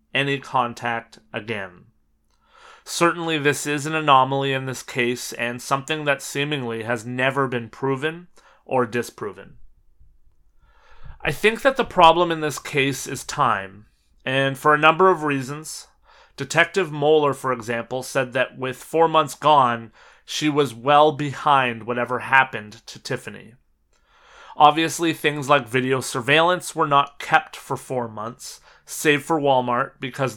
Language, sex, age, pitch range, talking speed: English, male, 30-49, 125-155 Hz, 140 wpm